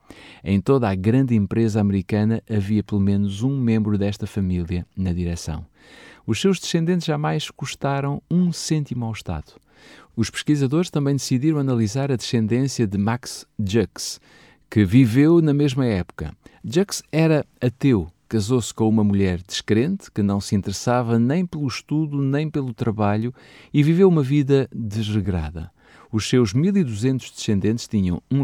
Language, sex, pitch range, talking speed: Portuguese, male, 100-135 Hz, 145 wpm